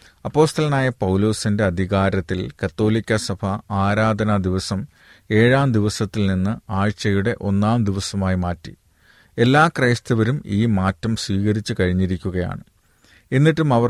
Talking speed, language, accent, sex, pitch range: 95 wpm, Malayalam, native, male, 100-120 Hz